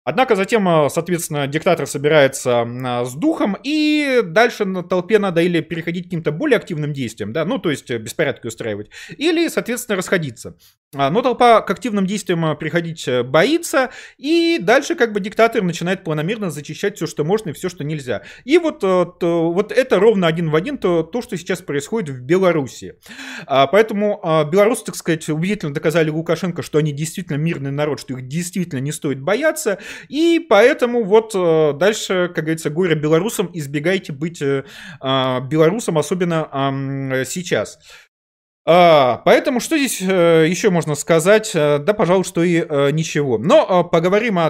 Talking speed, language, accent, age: 150 wpm, Russian, native, 30-49